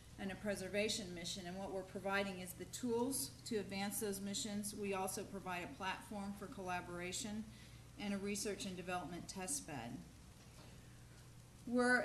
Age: 40-59